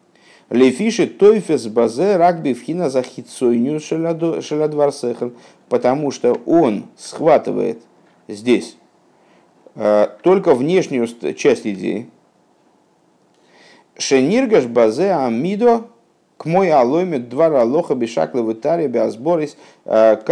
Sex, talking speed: male, 80 wpm